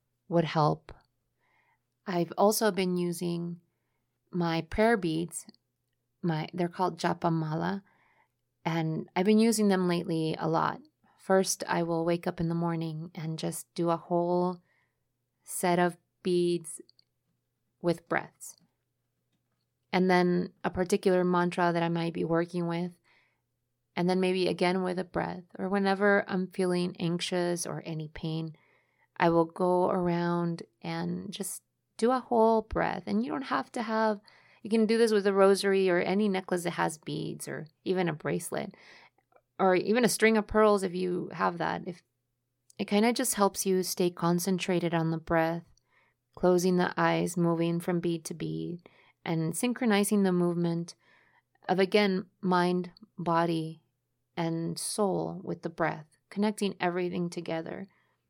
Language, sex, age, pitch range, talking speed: English, female, 30-49, 165-190 Hz, 150 wpm